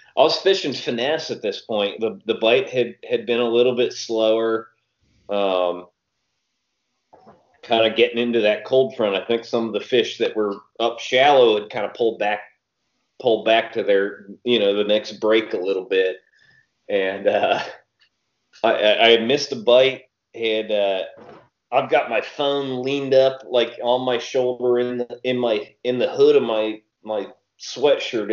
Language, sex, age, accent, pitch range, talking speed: English, male, 30-49, American, 110-140 Hz, 175 wpm